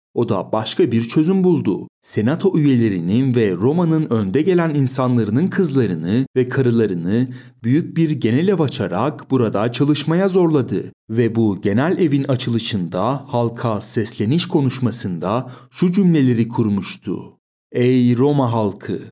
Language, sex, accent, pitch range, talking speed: Turkish, male, native, 115-150 Hz, 115 wpm